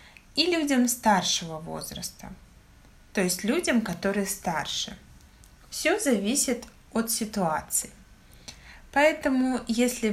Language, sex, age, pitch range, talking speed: Russian, female, 20-39, 175-240 Hz, 90 wpm